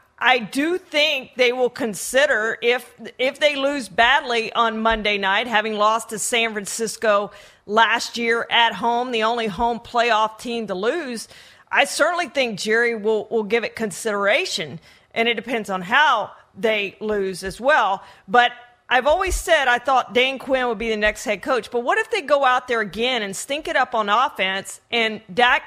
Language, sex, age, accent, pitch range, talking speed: English, female, 40-59, American, 215-265 Hz, 180 wpm